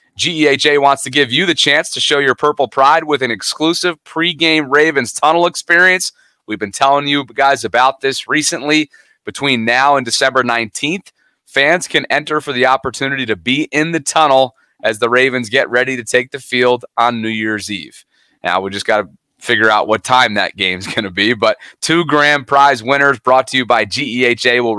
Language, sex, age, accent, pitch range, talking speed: English, male, 30-49, American, 120-145 Hz, 195 wpm